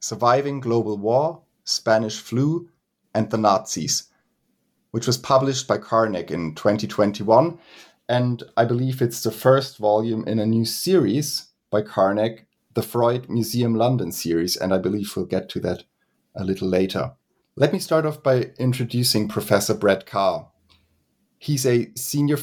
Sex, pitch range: male, 105-130 Hz